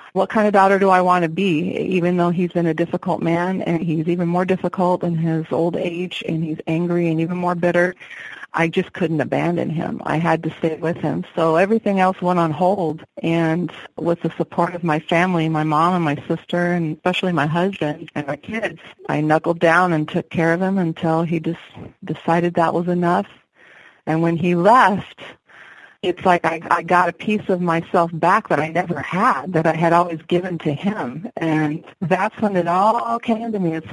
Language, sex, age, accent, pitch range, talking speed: English, female, 40-59, American, 165-185 Hz, 205 wpm